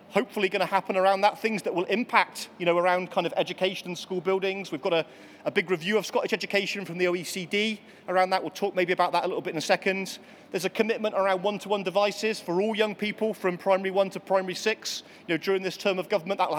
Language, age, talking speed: English, 30-49, 250 wpm